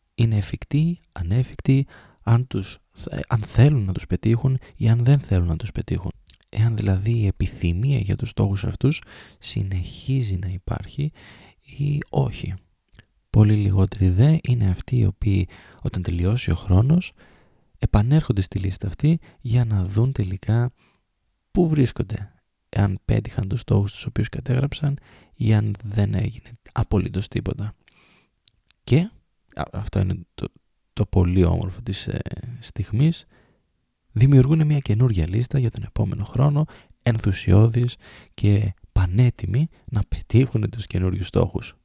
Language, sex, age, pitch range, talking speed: Greek, male, 20-39, 95-125 Hz, 130 wpm